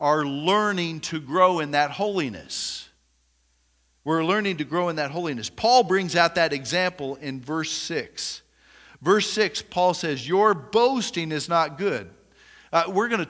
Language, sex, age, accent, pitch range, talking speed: English, male, 50-69, American, 145-185 Hz, 160 wpm